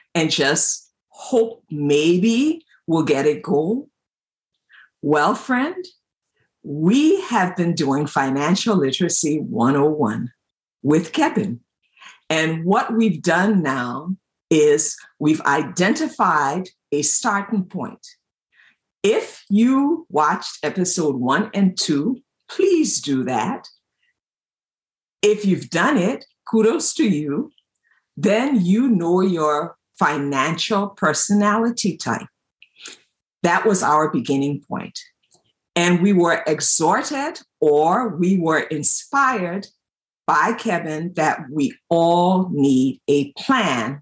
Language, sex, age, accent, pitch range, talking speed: English, female, 50-69, American, 155-220 Hz, 100 wpm